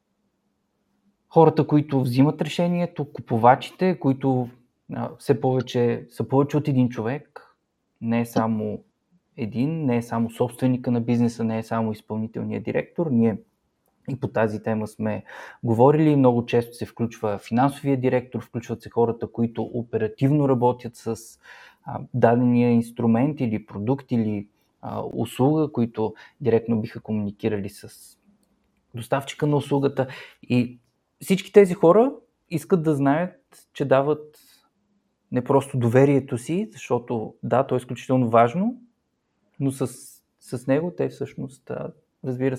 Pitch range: 115-145 Hz